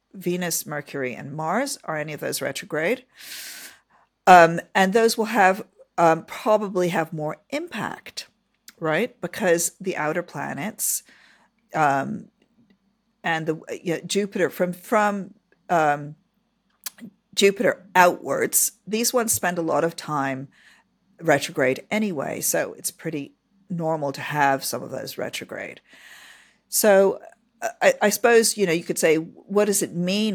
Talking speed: 130 wpm